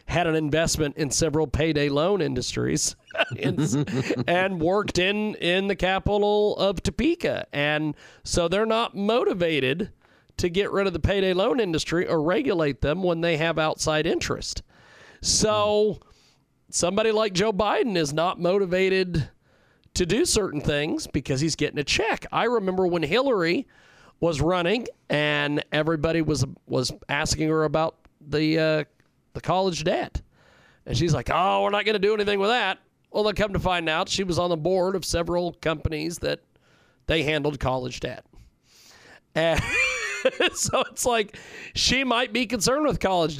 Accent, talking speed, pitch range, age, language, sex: American, 155 wpm, 150-195 Hz, 40-59, English, male